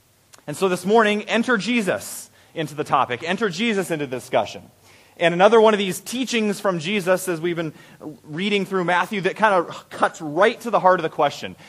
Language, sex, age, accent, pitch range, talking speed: English, male, 30-49, American, 145-195 Hz, 200 wpm